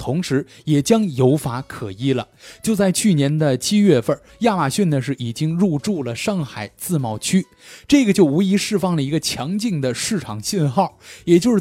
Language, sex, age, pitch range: Chinese, male, 20-39, 130-195 Hz